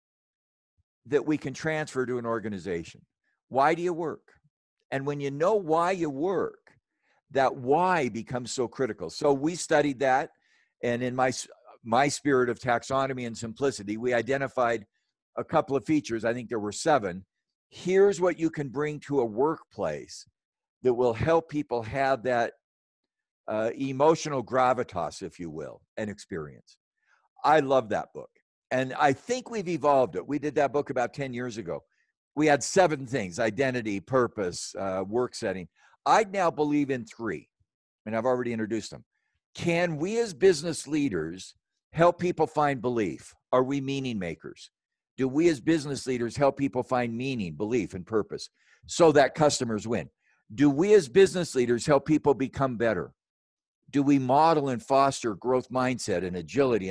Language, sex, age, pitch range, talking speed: English, male, 60-79, 120-150 Hz, 160 wpm